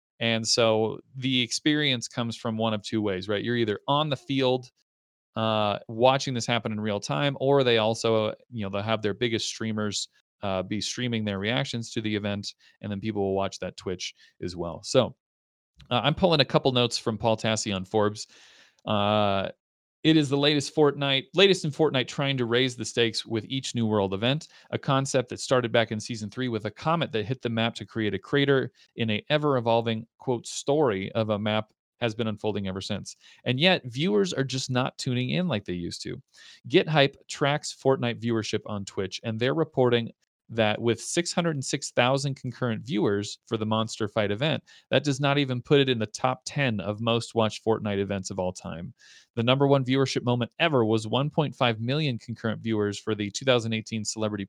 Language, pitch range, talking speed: English, 105-135 Hz, 195 wpm